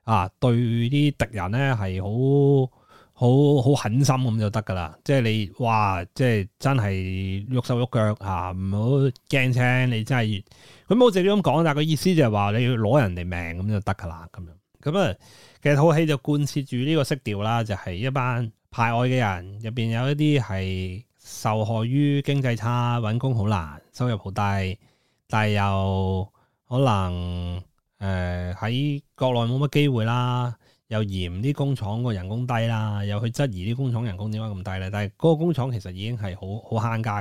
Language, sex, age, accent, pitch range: Chinese, male, 20-39, native, 100-135 Hz